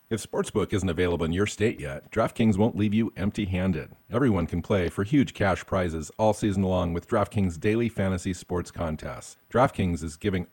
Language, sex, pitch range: English, male, 85-110 Hz